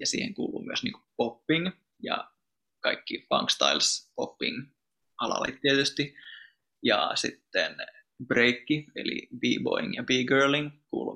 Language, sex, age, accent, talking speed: Finnish, male, 20-39, native, 95 wpm